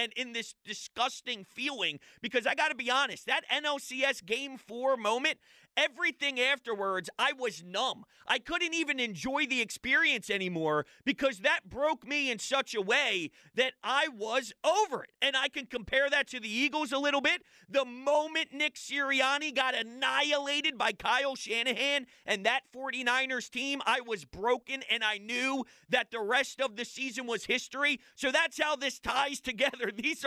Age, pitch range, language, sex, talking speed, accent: 30-49, 225-280 Hz, English, male, 170 wpm, American